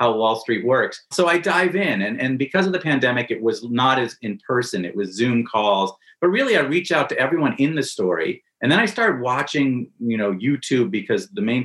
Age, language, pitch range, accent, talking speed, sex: 40-59, English, 110-160 Hz, American, 225 wpm, male